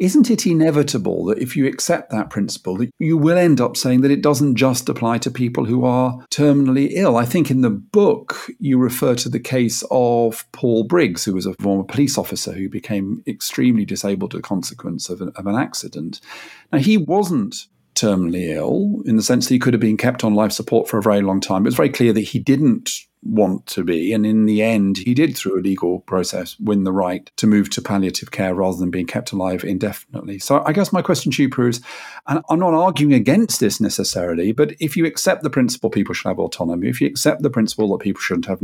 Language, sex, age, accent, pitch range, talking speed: English, male, 50-69, British, 105-150 Hz, 225 wpm